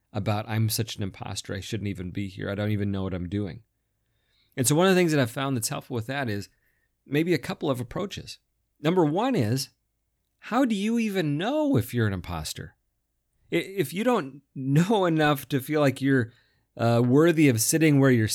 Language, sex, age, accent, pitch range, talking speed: English, male, 40-59, American, 105-145 Hz, 205 wpm